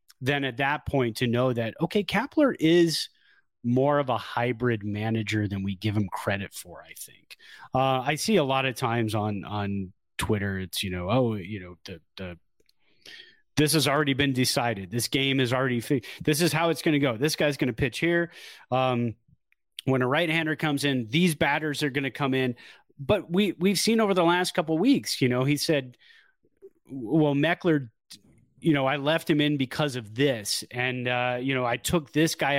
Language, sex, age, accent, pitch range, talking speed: English, male, 30-49, American, 120-155 Hz, 200 wpm